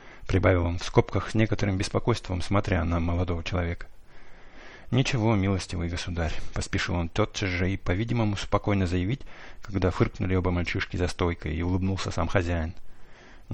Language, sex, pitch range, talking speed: English, male, 85-105 Hz, 160 wpm